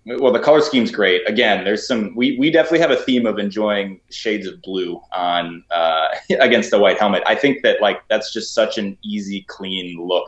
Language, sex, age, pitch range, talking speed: English, male, 20-39, 100-130 Hz, 210 wpm